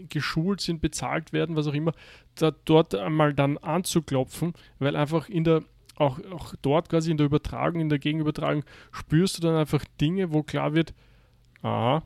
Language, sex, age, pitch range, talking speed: German, male, 30-49, 125-155 Hz, 175 wpm